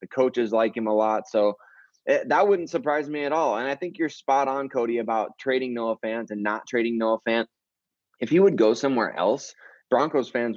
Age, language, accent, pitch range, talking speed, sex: 20-39, English, American, 110-135 Hz, 210 wpm, male